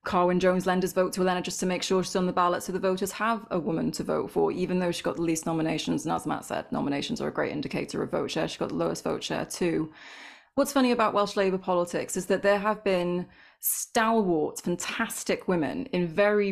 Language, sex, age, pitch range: English, female, 20-39, 170-200 Hz